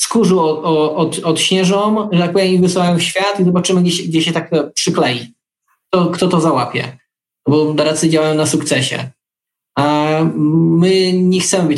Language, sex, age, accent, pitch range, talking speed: Polish, male, 20-39, native, 150-170 Hz, 165 wpm